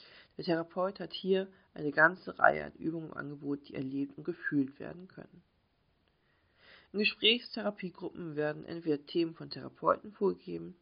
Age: 40-59